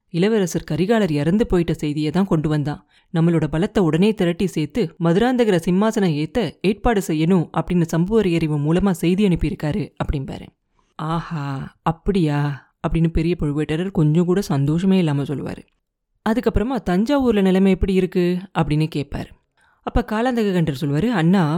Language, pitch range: Tamil, 160-215 Hz